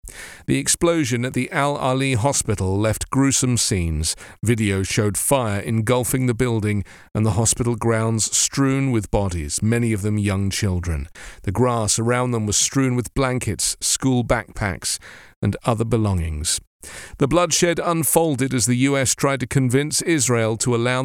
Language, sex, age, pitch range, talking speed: English, male, 40-59, 100-130 Hz, 150 wpm